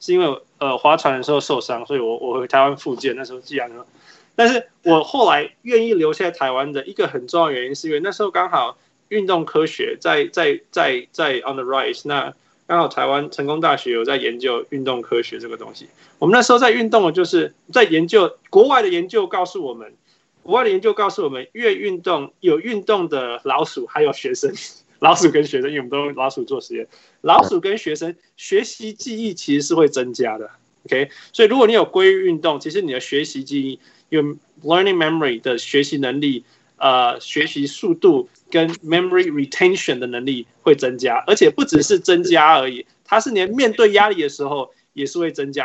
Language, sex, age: Chinese, male, 20-39